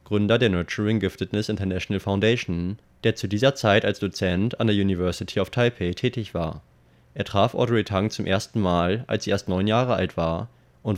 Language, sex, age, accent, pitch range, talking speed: German, male, 20-39, German, 90-115 Hz, 180 wpm